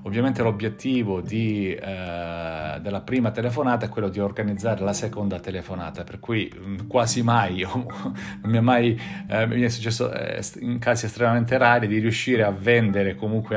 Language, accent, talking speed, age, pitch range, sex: Italian, native, 155 wpm, 40-59, 95-115 Hz, male